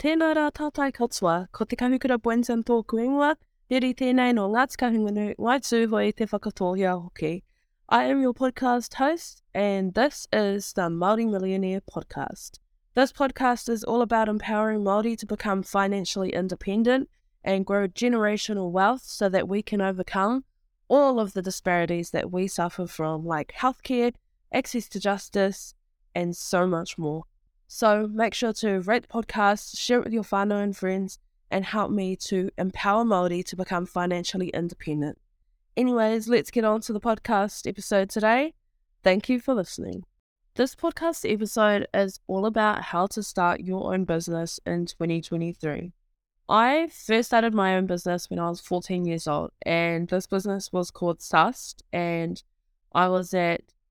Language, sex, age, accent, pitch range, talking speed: English, female, 10-29, Australian, 180-230 Hz, 135 wpm